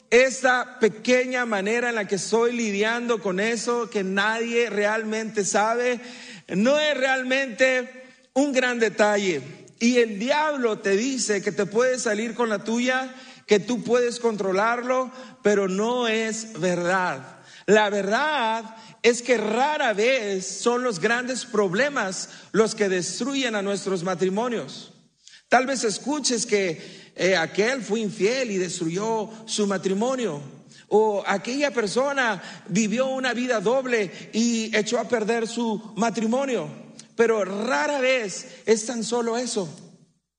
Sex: male